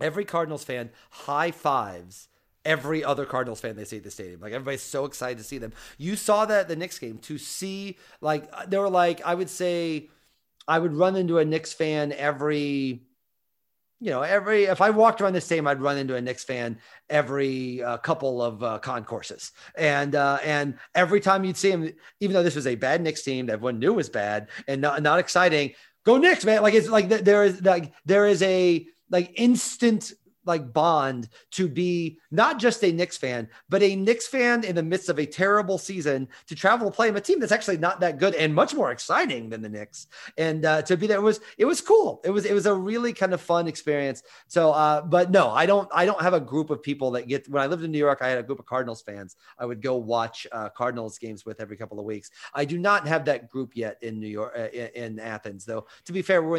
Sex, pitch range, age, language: male, 125-190 Hz, 30-49, English